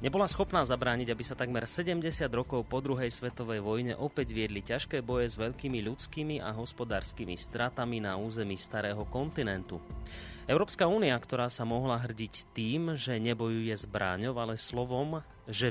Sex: male